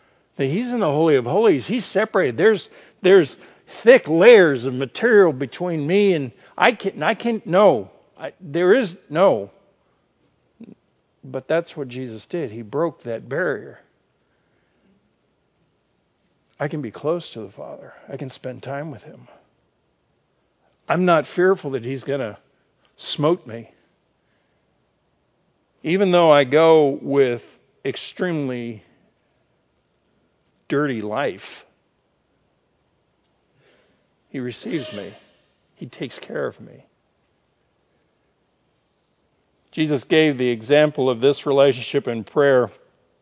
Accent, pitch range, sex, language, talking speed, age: American, 125-170 Hz, male, English, 110 wpm, 50-69